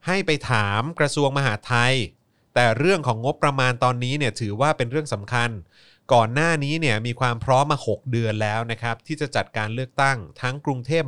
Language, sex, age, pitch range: Thai, male, 30-49, 115-145 Hz